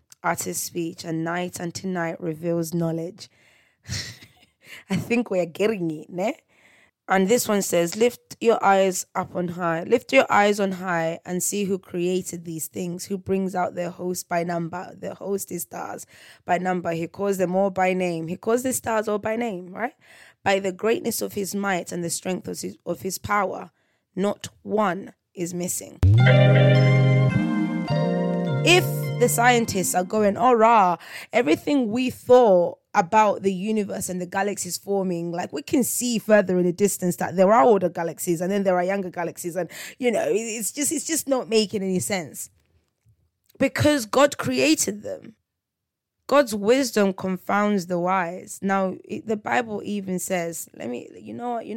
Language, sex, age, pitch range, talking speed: English, female, 20-39, 175-210 Hz, 170 wpm